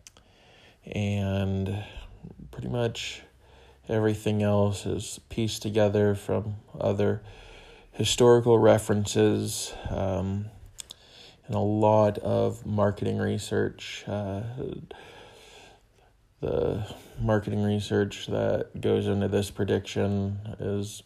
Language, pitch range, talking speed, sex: English, 95-110 Hz, 85 wpm, male